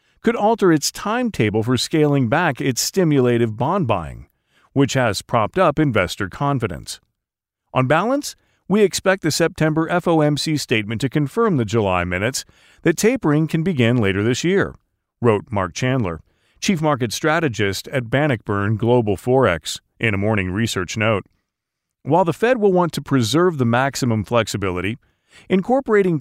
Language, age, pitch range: English, 40-59, 115-165 Hz